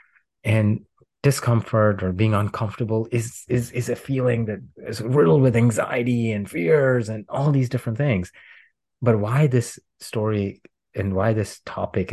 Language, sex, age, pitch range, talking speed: English, male, 30-49, 95-115 Hz, 150 wpm